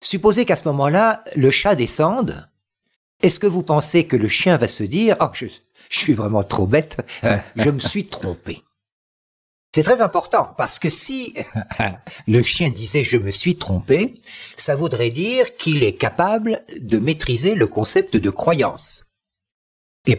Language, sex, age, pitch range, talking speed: French, male, 60-79, 105-175 Hz, 160 wpm